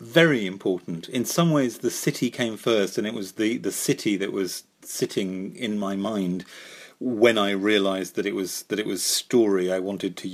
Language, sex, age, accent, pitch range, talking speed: English, male, 40-59, British, 105-140 Hz, 195 wpm